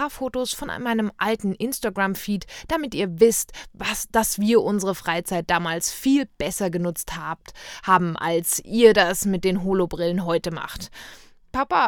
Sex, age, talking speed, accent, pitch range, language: female, 20-39, 140 wpm, German, 195-255 Hz, German